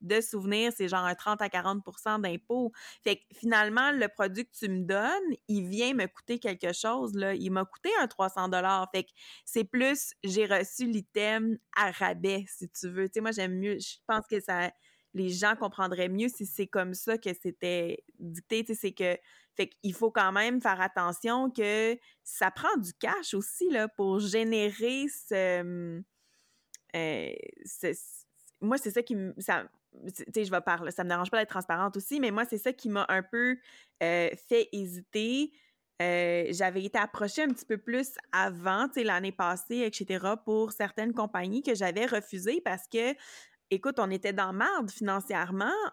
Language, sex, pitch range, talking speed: French, female, 190-235 Hz, 185 wpm